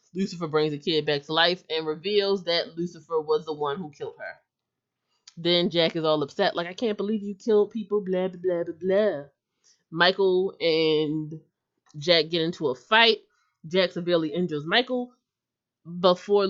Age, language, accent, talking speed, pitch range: 20-39, English, American, 165 wpm, 150-185 Hz